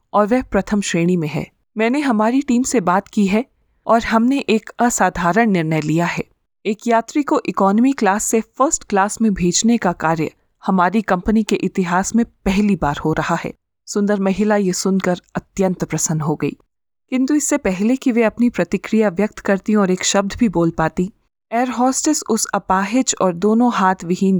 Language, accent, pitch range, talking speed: Hindi, native, 180-230 Hz, 175 wpm